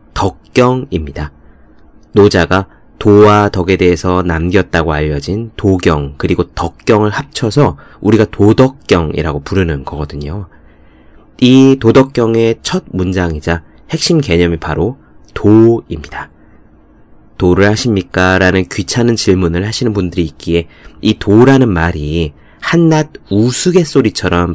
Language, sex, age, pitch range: Korean, male, 30-49, 80-120 Hz